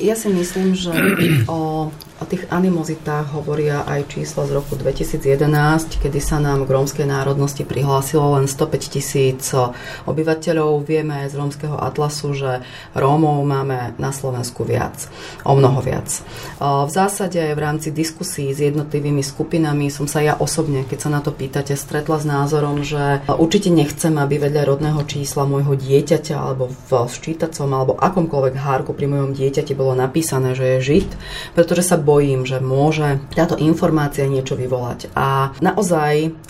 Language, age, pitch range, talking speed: Slovak, 30-49, 135-160 Hz, 150 wpm